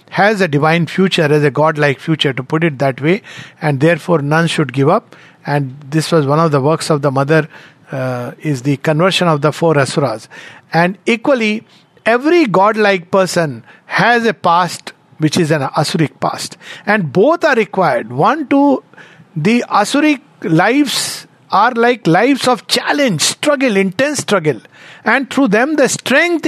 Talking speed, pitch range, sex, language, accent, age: 165 wpm, 150-190 Hz, male, English, Indian, 50-69